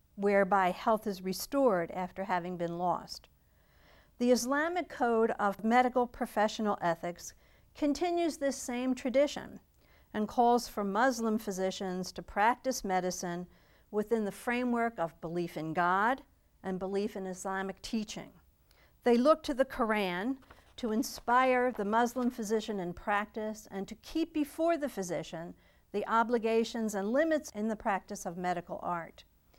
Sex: female